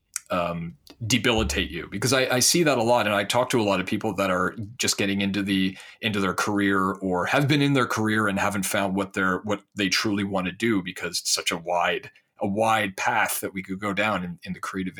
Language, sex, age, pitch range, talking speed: English, male, 30-49, 95-120 Hz, 245 wpm